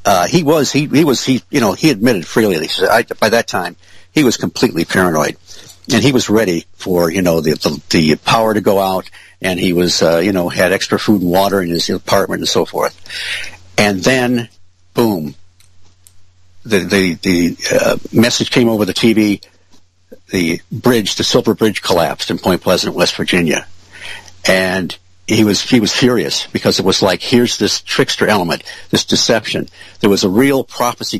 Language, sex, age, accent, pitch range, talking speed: English, male, 60-79, American, 90-110 Hz, 190 wpm